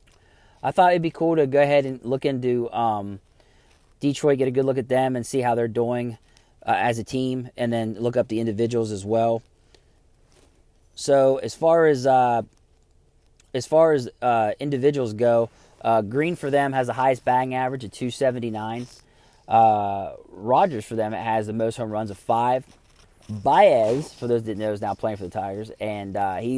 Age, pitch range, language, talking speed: 20-39, 110-130 Hz, English, 190 wpm